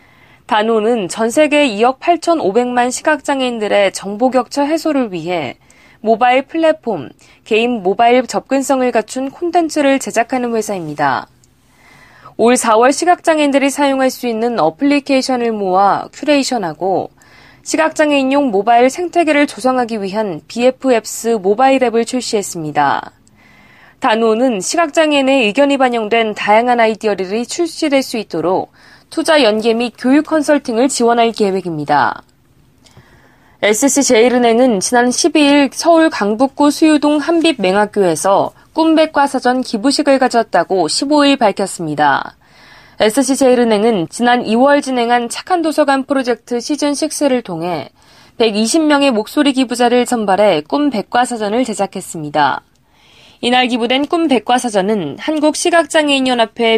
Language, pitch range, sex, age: Korean, 215-285 Hz, female, 20-39